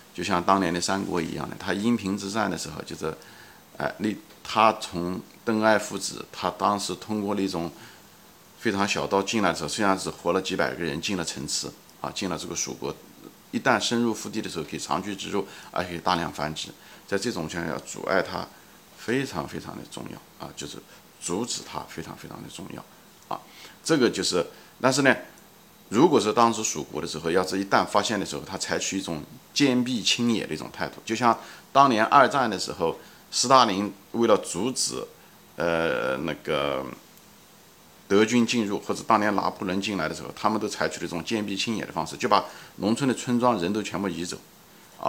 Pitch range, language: 90-110 Hz, Chinese